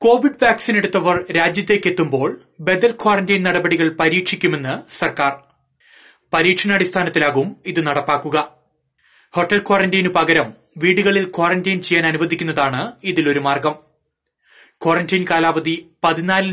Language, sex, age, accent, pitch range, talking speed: Malayalam, male, 30-49, native, 155-190 Hz, 85 wpm